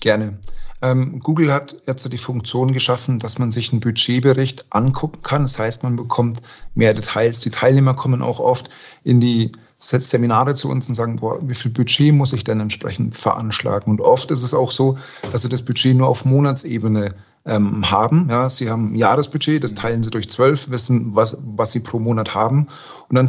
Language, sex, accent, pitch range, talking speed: German, male, German, 115-135 Hz, 190 wpm